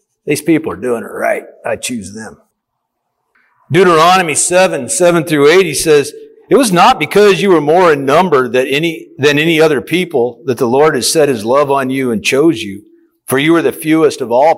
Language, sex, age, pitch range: English, male, 50-69, 125-190 Hz